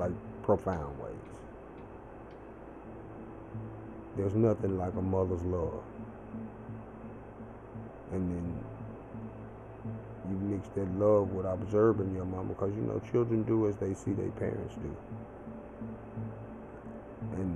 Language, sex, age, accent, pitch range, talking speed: English, male, 30-49, American, 95-115 Hz, 105 wpm